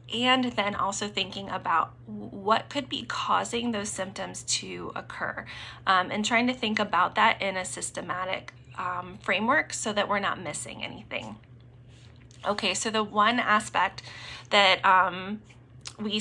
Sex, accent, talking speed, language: female, American, 145 wpm, English